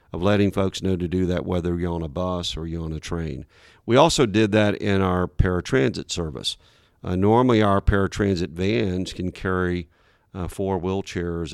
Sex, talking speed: male, 180 wpm